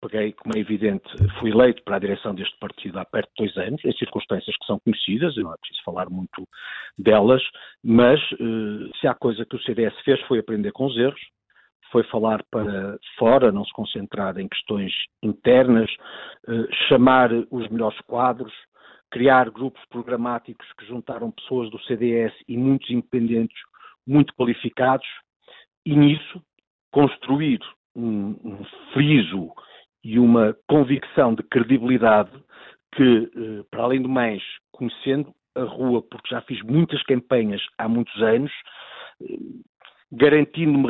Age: 50-69